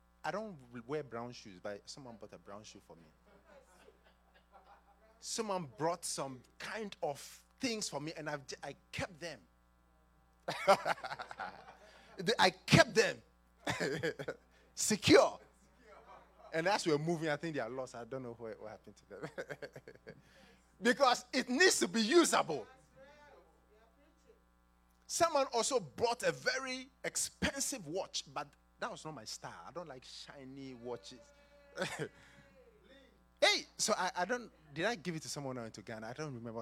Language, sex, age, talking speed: English, male, 30-49, 145 wpm